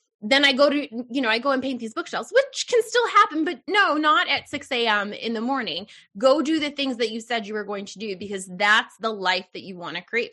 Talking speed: 265 wpm